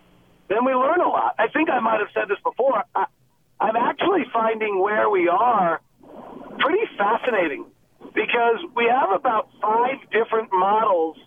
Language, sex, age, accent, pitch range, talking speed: English, male, 50-69, American, 210-265 Hz, 150 wpm